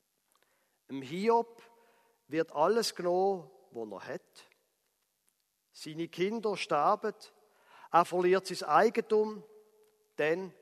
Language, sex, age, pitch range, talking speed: German, male, 50-69, 170-235 Hz, 90 wpm